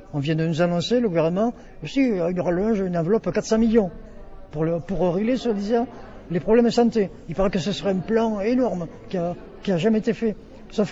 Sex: male